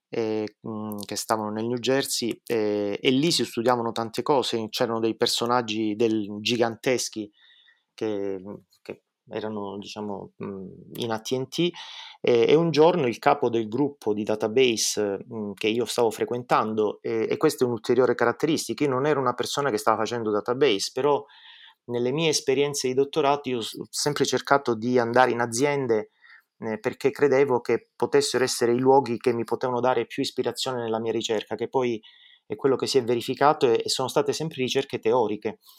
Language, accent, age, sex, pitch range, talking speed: Italian, native, 30-49, male, 115-140 Hz, 160 wpm